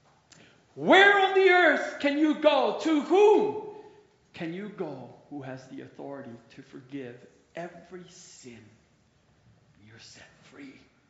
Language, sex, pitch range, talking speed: English, male, 120-175 Hz, 125 wpm